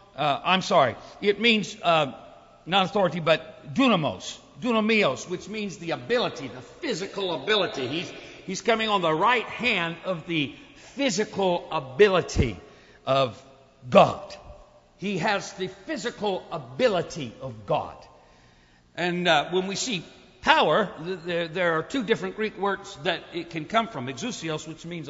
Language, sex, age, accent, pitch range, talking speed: English, male, 60-79, American, 165-220 Hz, 140 wpm